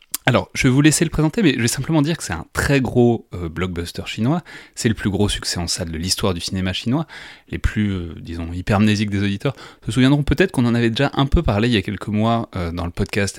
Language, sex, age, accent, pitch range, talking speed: French, male, 30-49, French, 95-120 Hz, 260 wpm